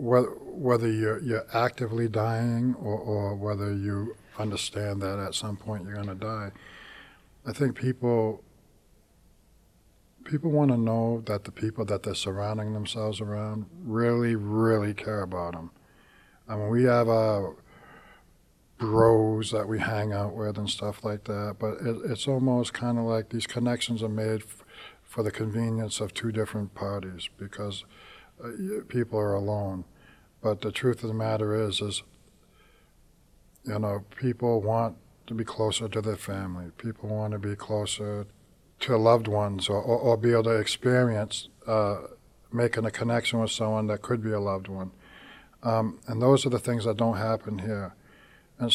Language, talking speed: English, 160 wpm